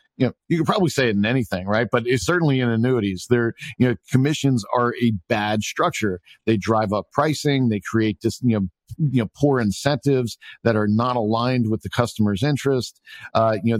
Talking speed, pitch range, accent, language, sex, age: 205 wpm, 105-125 Hz, American, English, male, 50-69